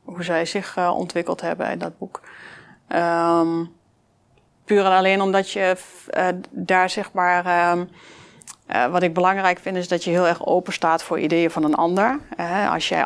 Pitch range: 170-185 Hz